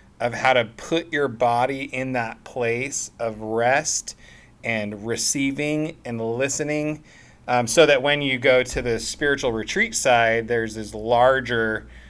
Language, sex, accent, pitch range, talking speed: English, male, American, 105-135 Hz, 145 wpm